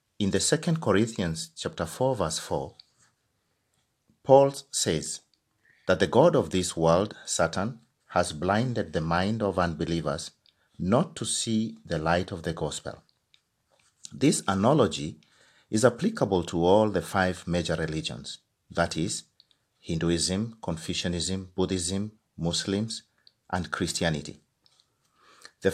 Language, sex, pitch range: Japanese, male, 85-115 Hz